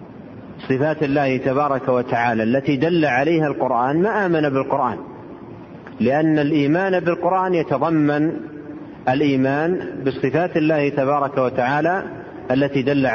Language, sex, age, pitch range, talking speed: Arabic, male, 40-59, 130-170 Hz, 100 wpm